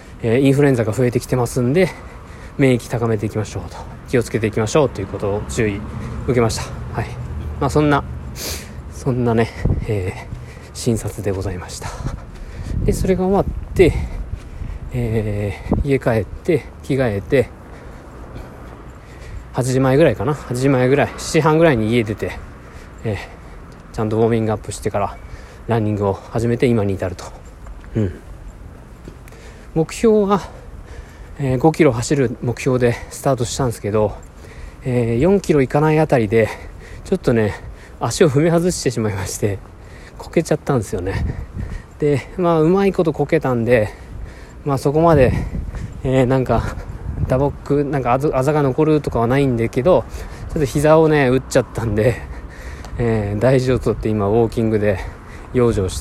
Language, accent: Japanese, native